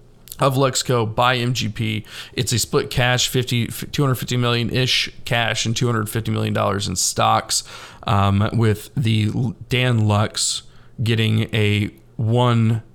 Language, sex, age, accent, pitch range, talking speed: English, male, 40-59, American, 105-125 Hz, 125 wpm